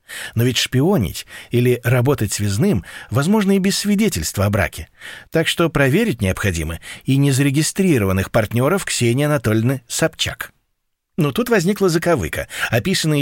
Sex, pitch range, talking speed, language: male, 110-155 Hz, 125 wpm, Russian